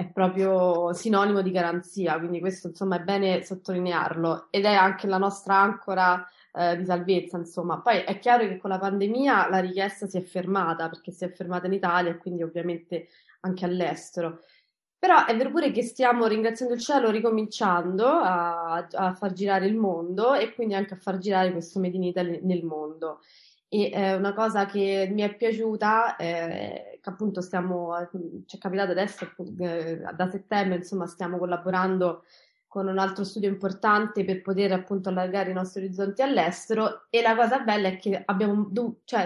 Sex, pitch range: female, 180-205 Hz